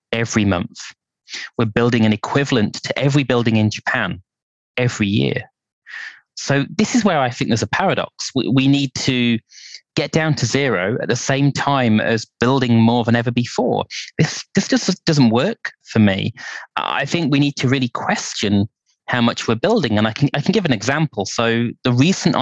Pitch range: 105-130 Hz